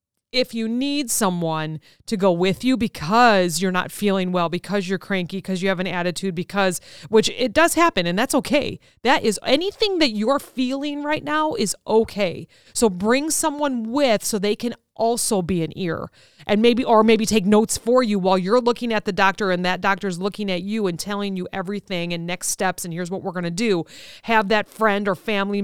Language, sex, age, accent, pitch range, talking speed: English, female, 30-49, American, 185-235 Hz, 205 wpm